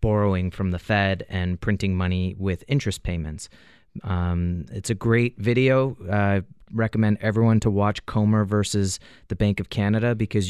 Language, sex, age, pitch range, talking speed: English, male, 30-49, 100-115 Hz, 155 wpm